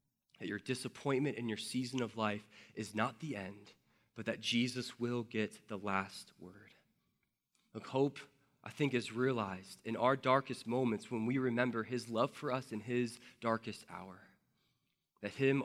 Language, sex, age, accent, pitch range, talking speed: English, male, 20-39, American, 115-140 Hz, 165 wpm